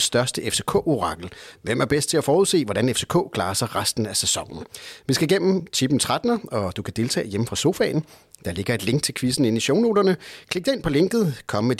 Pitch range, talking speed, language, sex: 110-150 Hz, 215 wpm, Danish, male